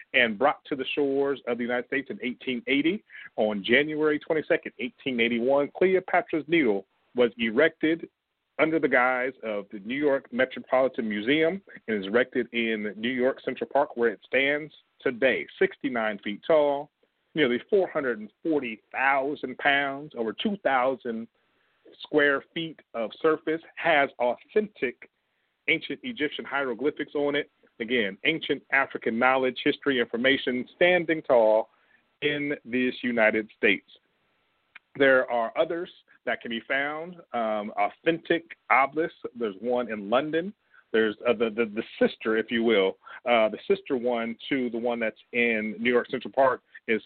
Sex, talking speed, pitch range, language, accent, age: male, 140 wpm, 115-155 Hz, English, American, 40-59